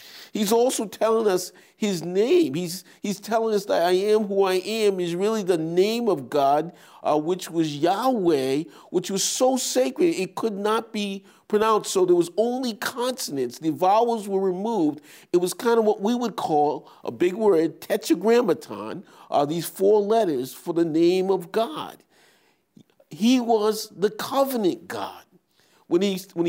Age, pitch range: 50-69, 180-235 Hz